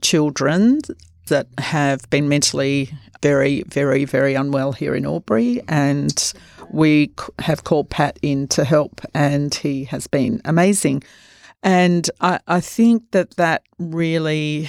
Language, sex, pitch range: English, female, 140-165 Hz